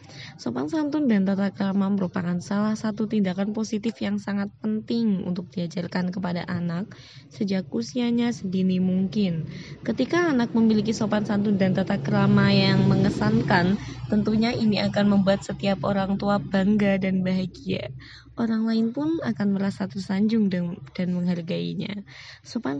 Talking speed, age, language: 130 wpm, 20-39, Indonesian